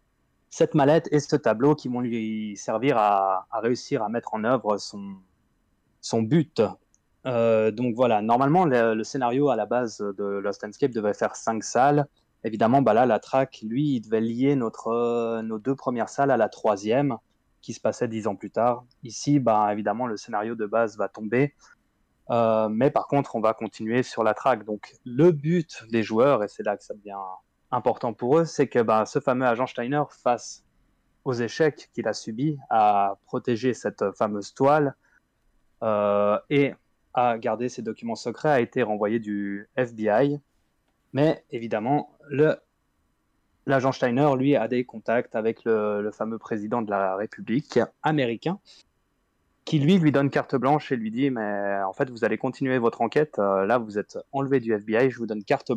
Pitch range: 110-140 Hz